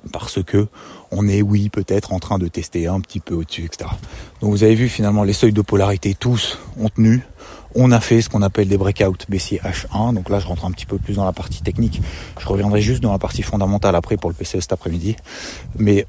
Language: French